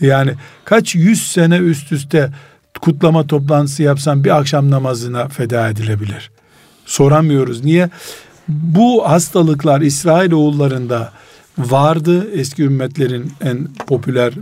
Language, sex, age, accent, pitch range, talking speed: Turkish, male, 50-69, native, 135-165 Hz, 100 wpm